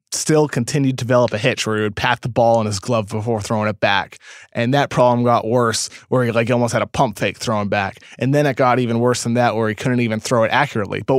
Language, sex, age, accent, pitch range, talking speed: English, male, 20-39, American, 110-140 Hz, 270 wpm